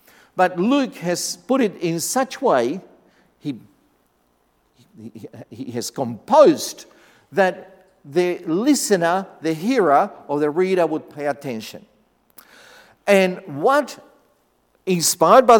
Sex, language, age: male, English, 50-69